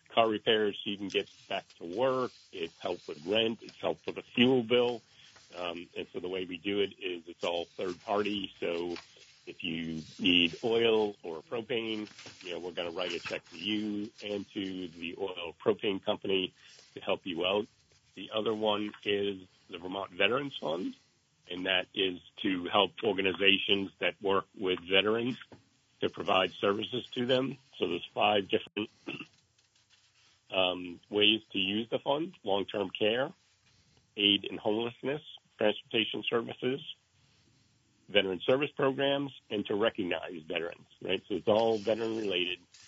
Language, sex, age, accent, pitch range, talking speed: English, male, 50-69, American, 95-120 Hz, 155 wpm